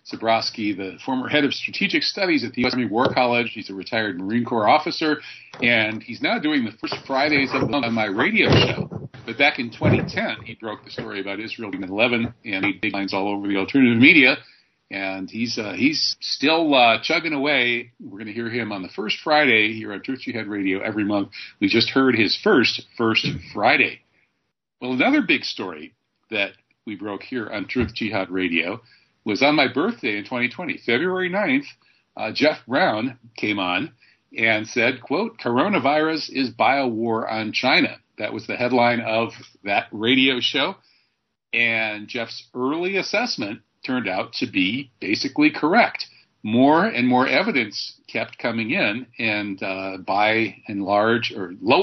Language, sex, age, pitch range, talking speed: English, male, 50-69, 110-140 Hz, 175 wpm